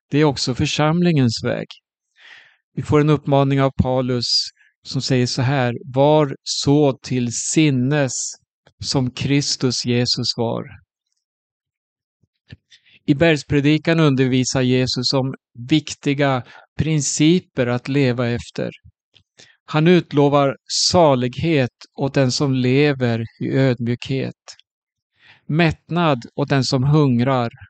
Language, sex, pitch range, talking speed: Swedish, male, 125-150 Hz, 100 wpm